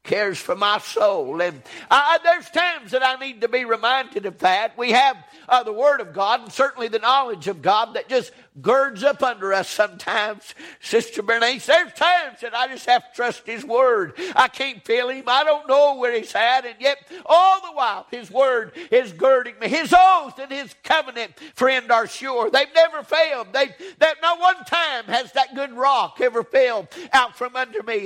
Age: 60-79